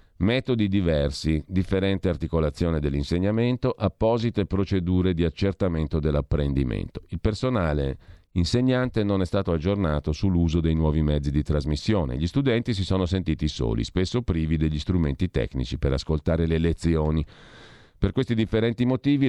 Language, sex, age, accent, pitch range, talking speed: Italian, male, 50-69, native, 80-110 Hz, 130 wpm